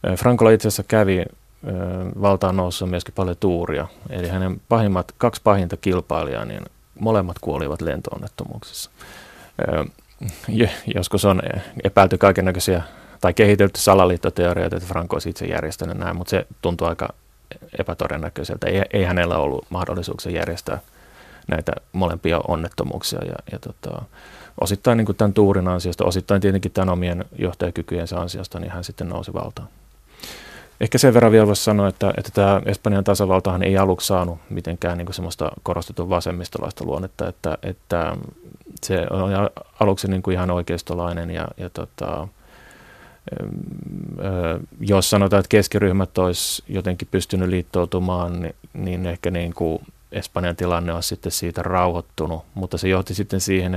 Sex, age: male, 30-49